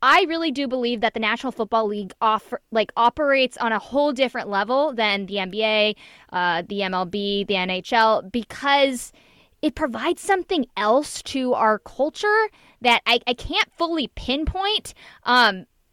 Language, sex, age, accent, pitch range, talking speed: English, female, 20-39, American, 205-255 Hz, 150 wpm